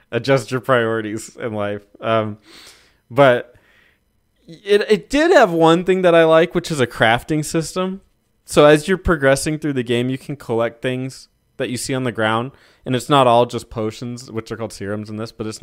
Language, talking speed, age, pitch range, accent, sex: English, 200 wpm, 20-39, 115-165 Hz, American, male